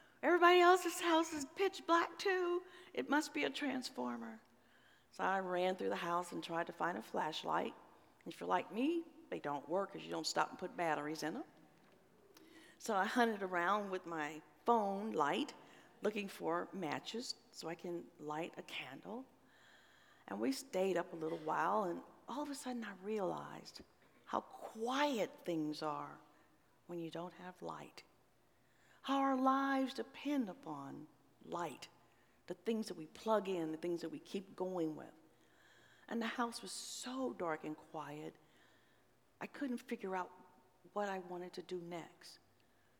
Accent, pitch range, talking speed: American, 165-260 Hz, 165 wpm